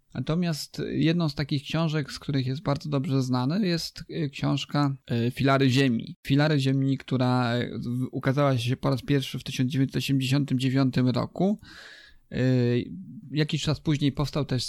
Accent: native